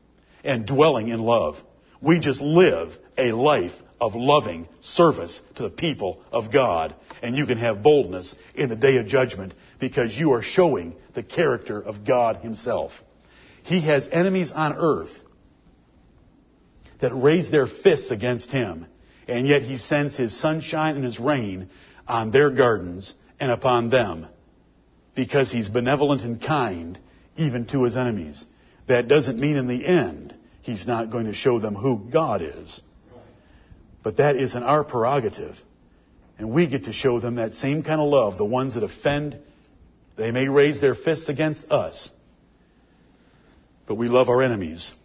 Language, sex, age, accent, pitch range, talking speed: English, male, 60-79, American, 110-140 Hz, 155 wpm